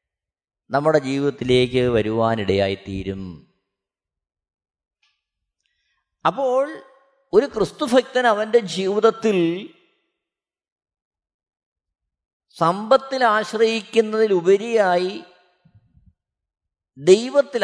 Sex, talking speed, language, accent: male, 35 wpm, Malayalam, native